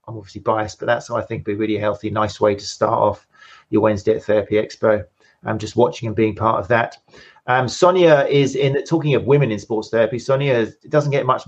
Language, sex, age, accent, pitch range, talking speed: English, male, 30-49, British, 110-140 Hz, 235 wpm